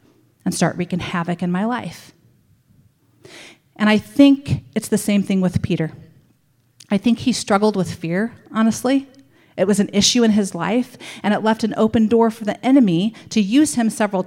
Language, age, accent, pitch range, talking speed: English, 40-59, American, 170-255 Hz, 180 wpm